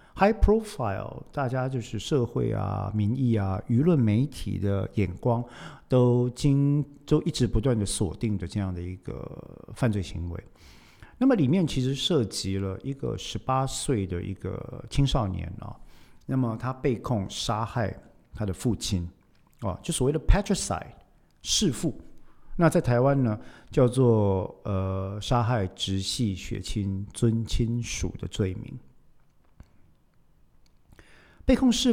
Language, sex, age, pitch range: Chinese, male, 50-69, 100-130 Hz